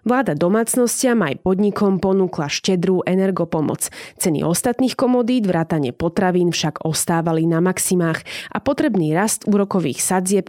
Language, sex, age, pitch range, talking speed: Slovak, female, 20-39, 165-205 Hz, 120 wpm